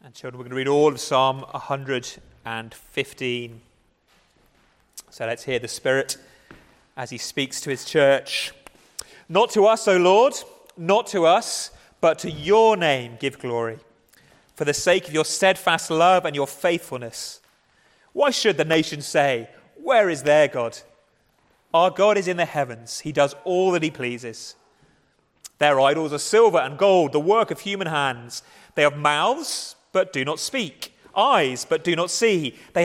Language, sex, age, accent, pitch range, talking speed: English, male, 30-49, British, 135-185 Hz, 165 wpm